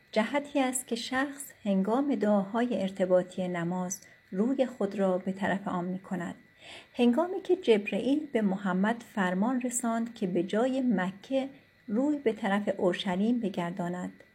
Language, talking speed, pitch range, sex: Persian, 130 wpm, 185-235 Hz, female